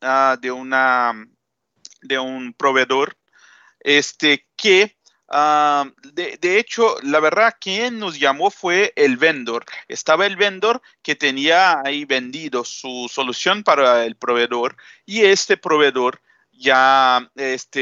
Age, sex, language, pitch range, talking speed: 40-59, male, Spanish, 130-210 Hz, 125 wpm